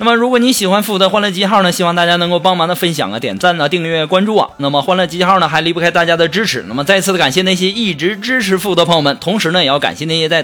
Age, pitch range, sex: 20-39, 165-210 Hz, male